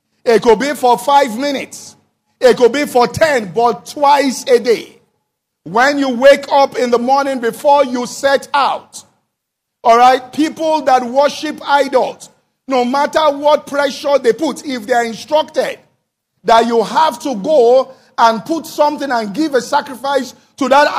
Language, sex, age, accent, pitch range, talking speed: English, male, 50-69, Nigerian, 235-290 Hz, 160 wpm